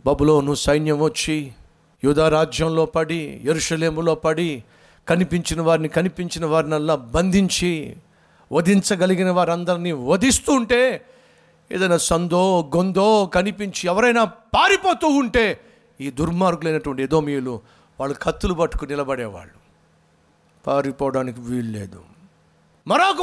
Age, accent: 50-69, native